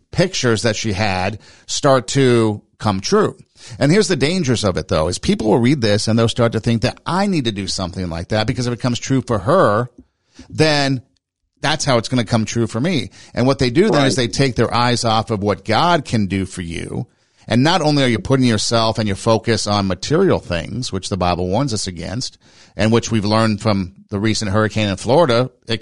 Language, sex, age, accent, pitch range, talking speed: English, male, 50-69, American, 105-135 Hz, 230 wpm